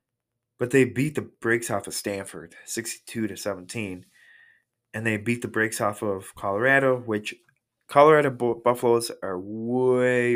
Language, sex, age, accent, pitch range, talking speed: English, male, 20-39, American, 105-130 Hz, 145 wpm